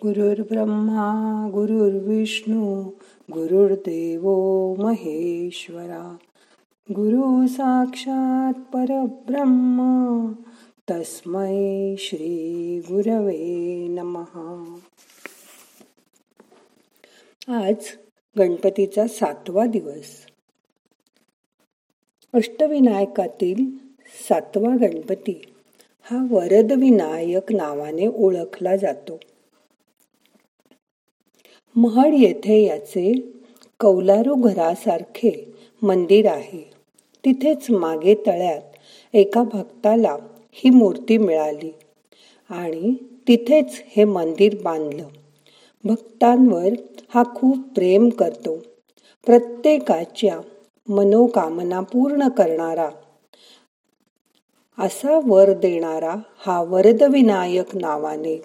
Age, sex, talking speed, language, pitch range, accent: 50-69, female, 60 wpm, Marathi, 180-235 Hz, native